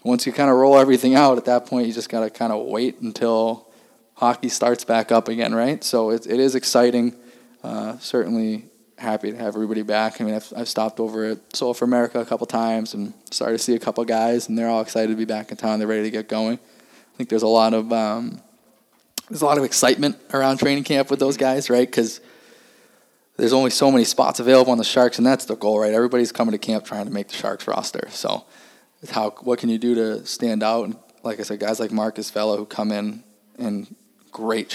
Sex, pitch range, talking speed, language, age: male, 110-125 Hz, 235 wpm, English, 20-39